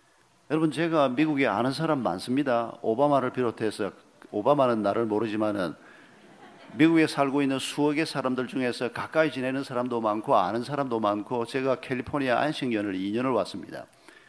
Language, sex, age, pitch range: Korean, male, 50-69, 115-170 Hz